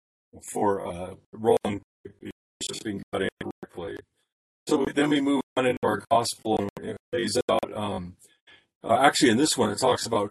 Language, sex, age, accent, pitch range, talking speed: English, male, 40-59, American, 95-115 Hz, 155 wpm